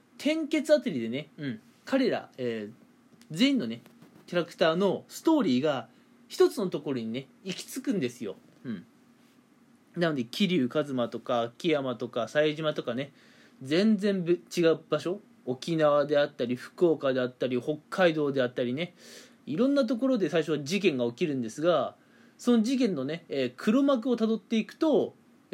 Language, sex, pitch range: Japanese, male, 145-245 Hz